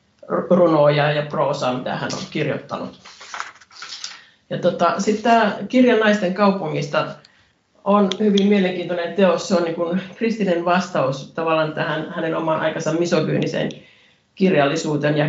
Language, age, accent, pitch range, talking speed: Finnish, 50-69, native, 150-180 Hz, 120 wpm